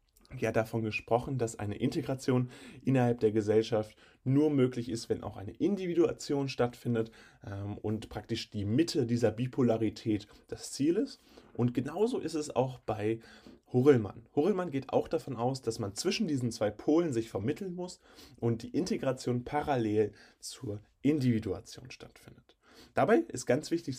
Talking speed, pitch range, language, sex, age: 150 wpm, 110-140 Hz, German, male, 30-49